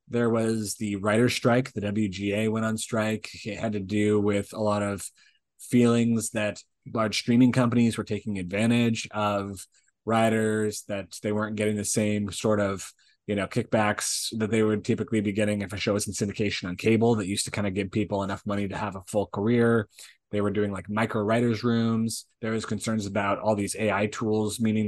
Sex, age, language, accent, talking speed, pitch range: male, 20-39, English, American, 200 wpm, 105-120 Hz